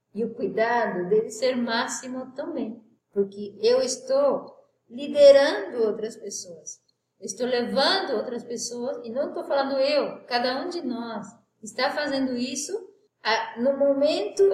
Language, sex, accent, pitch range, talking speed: Portuguese, female, Brazilian, 225-295 Hz, 130 wpm